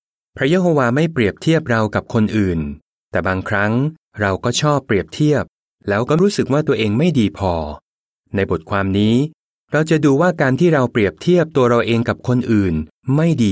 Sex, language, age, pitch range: male, Thai, 30-49, 100-135 Hz